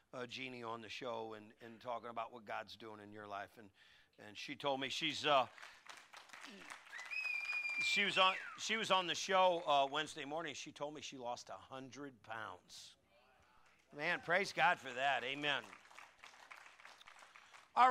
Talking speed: 160 wpm